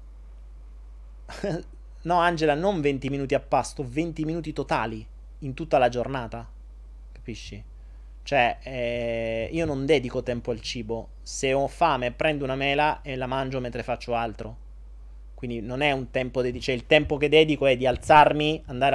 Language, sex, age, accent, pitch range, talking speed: Italian, male, 30-49, native, 110-145 Hz, 160 wpm